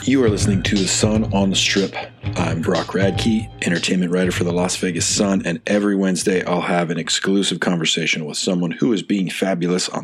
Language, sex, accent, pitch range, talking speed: English, male, American, 85-100 Hz, 205 wpm